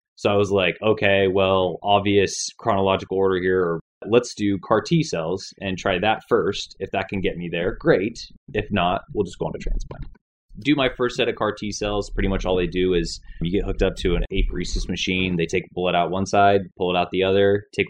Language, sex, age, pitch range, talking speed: English, male, 20-39, 90-100 Hz, 230 wpm